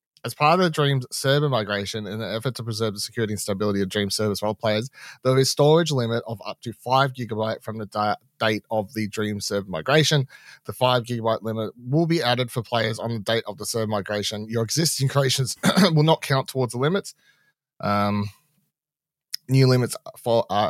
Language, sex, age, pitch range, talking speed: English, male, 30-49, 105-130 Hz, 200 wpm